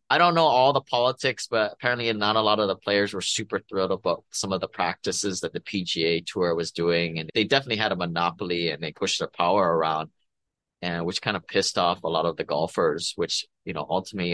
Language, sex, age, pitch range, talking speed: English, male, 30-49, 85-110 Hz, 230 wpm